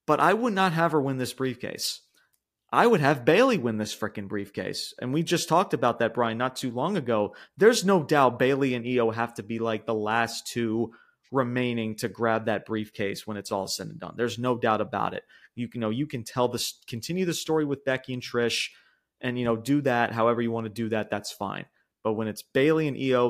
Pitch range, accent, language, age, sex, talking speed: 115-150 Hz, American, English, 30-49, male, 230 wpm